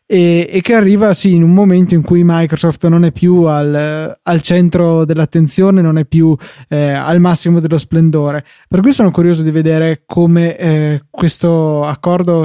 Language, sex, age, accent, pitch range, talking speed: Italian, male, 20-39, native, 155-180 Hz, 175 wpm